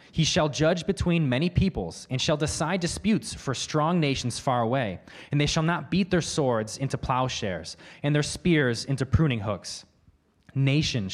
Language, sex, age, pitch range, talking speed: English, male, 20-39, 120-150 Hz, 165 wpm